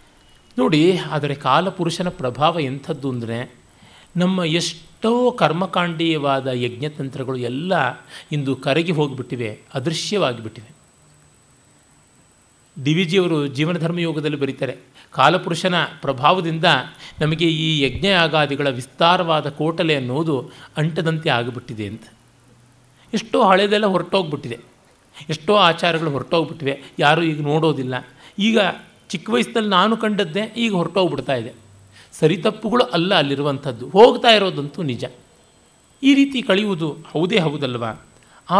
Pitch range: 130-180 Hz